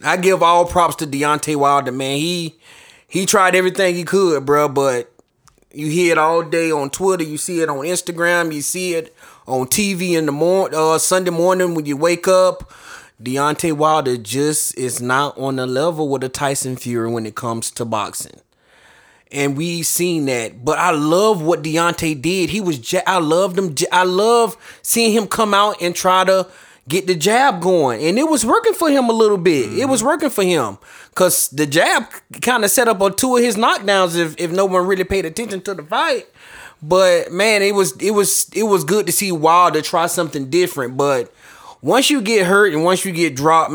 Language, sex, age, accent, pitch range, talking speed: English, male, 20-39, American, 155-190 Hz, 205 wpm